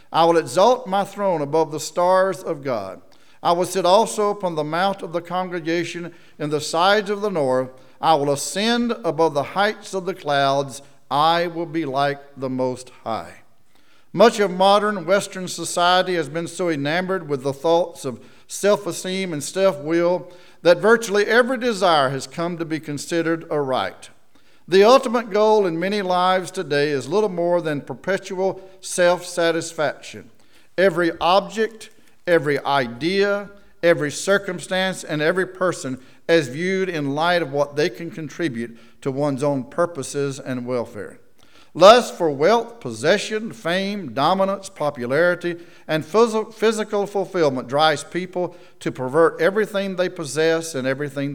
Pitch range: 145-190 Hz